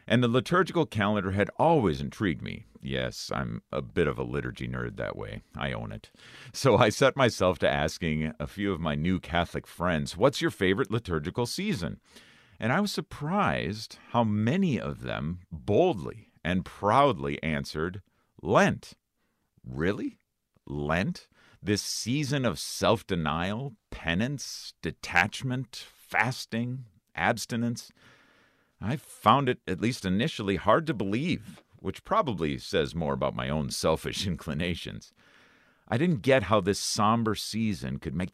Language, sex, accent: English, male, American